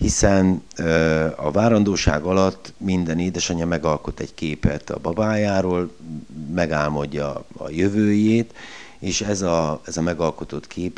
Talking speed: 115 wpm